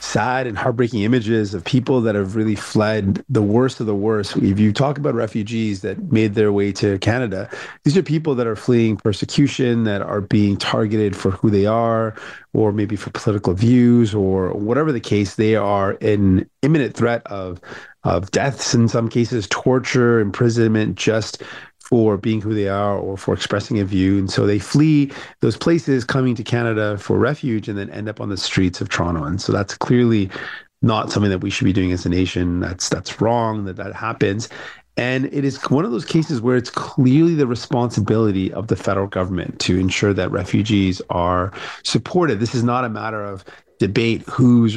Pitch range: 100-120 Hz